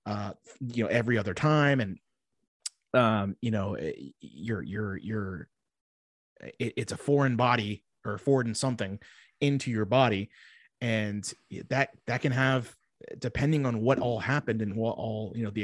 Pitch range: 105-130 Hz